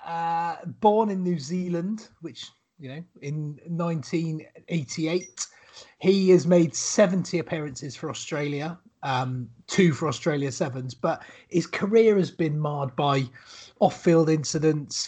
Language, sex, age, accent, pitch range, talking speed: English, male, 30-49, British, 145-170 Hz, 125 wpm